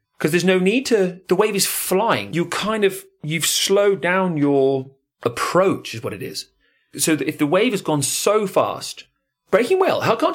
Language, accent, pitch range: English, British, 130-190 Hz